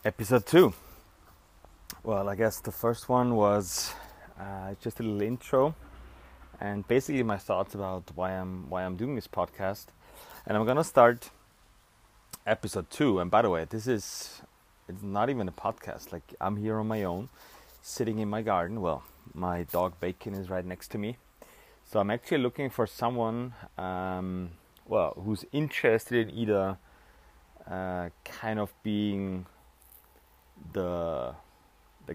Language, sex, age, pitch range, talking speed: German, male, 30-49, 90-115 Hz, 150 wpm